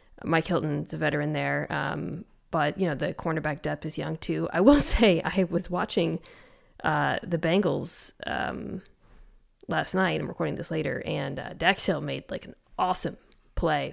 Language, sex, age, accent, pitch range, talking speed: English, female, 20-39, American, 155-185 Hz, 170 wpm